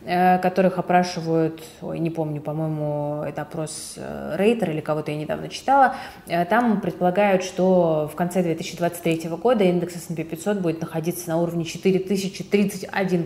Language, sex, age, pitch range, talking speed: Russian, female, 20-39, 165-205 Hz, 125 wpm